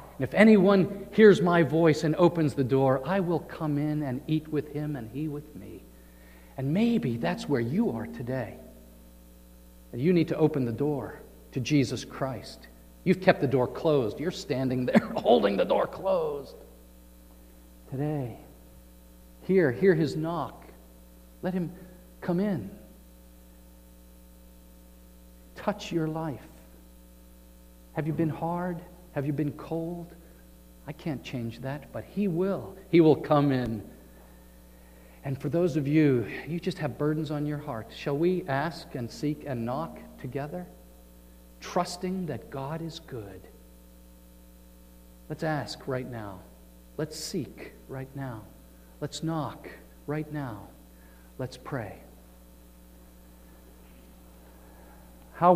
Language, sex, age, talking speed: English, male, 50-69, 130 wpm